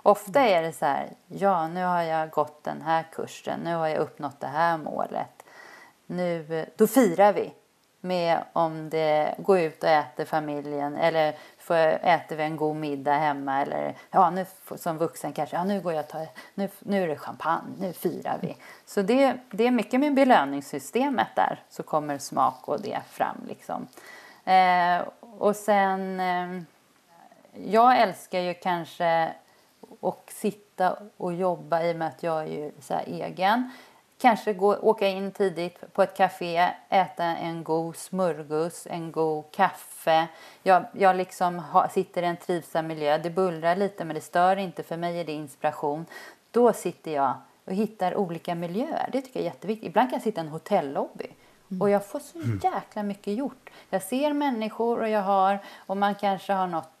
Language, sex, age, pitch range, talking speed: Swedish, female, 30-49, 160-200 Hz, 180 wpm